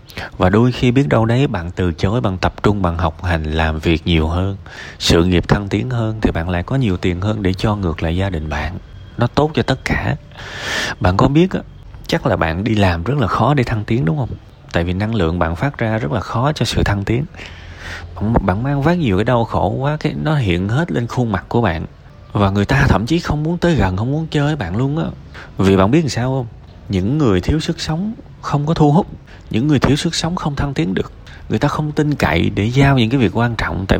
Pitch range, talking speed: 95-140 Hz, 255 wpm